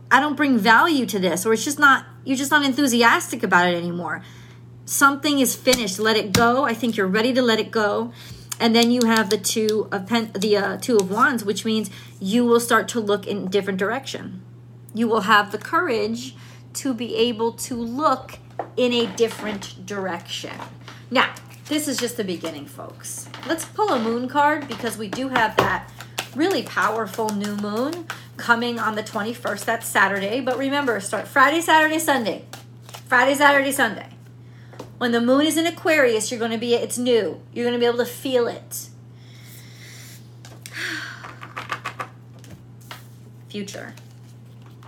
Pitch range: 175-245 Hz